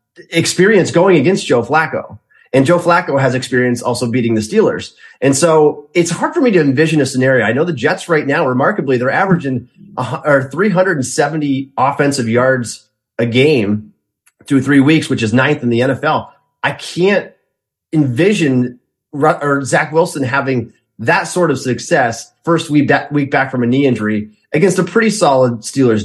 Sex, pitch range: male, 120-155 Hz